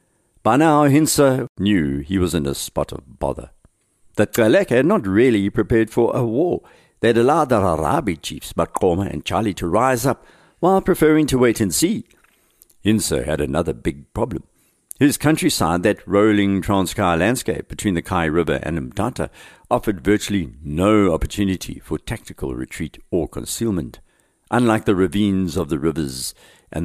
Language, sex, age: English, male, 60-79